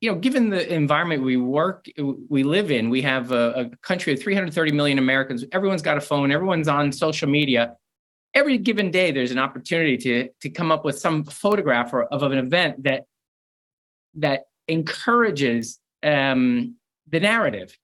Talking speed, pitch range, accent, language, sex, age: 170 wpm, 140-185 Hz, American, English, male, 30-49